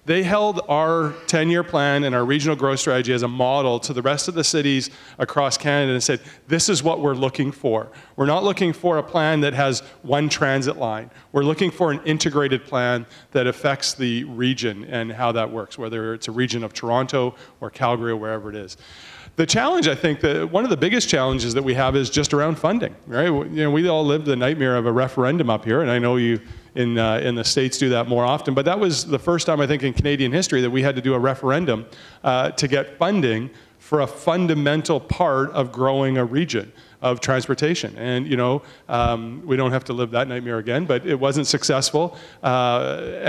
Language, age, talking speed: English, 40-59, 215 wpm